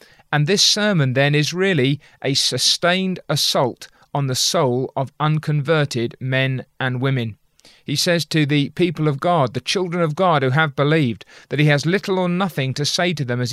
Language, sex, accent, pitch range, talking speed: English, male, British, 135-170 Hz, 185 wpm